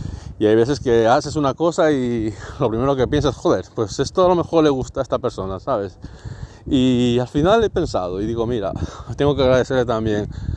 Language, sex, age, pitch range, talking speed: Spanish, male, 30-49, 100-120 Hz, 210 wpm